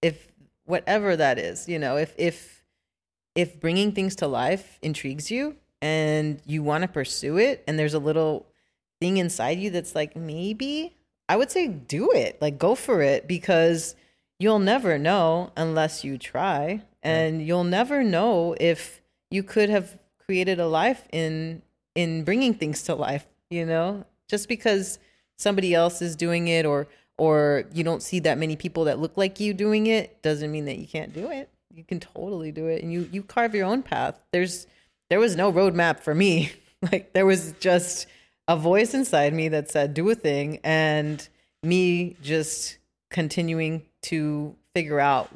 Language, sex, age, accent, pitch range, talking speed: English, female, 30-49, American, 155-190 Hz, 175 wpm